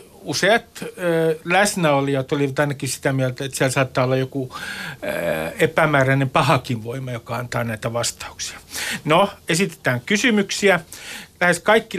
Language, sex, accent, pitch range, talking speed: Finnish, male, native, 140-195 Hz, 125 wpm